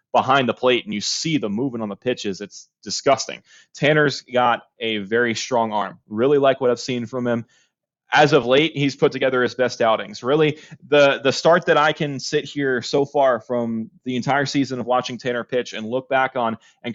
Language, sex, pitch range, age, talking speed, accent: English, male, 120-140 Hz, 30-49, 210 wpm, American